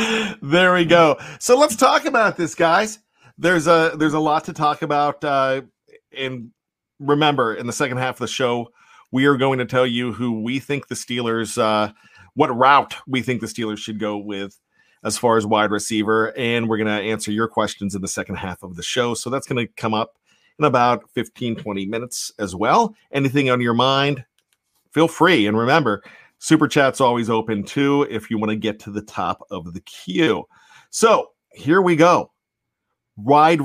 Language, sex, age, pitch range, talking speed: English, male, 40-59, 110-145 Hz, 195 wpm